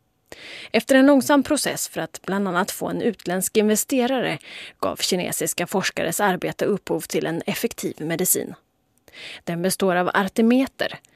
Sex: female